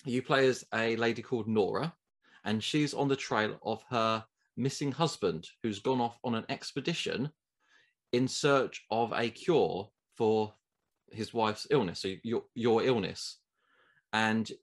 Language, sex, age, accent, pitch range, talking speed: English, male, 20-39, British, 105-130 Hz, 150 wpm